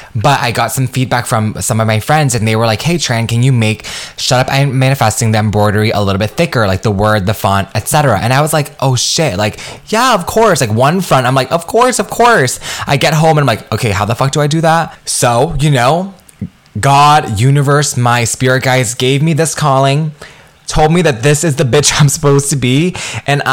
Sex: male